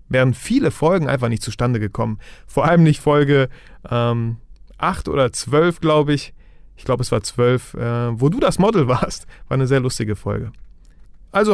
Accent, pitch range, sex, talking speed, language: German, 120-155 Hz, male, 175 wpm, German